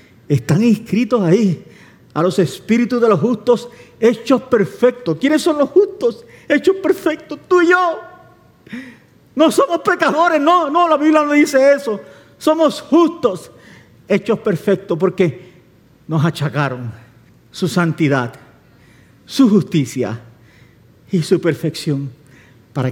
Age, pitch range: 50-69, 125-195 Hz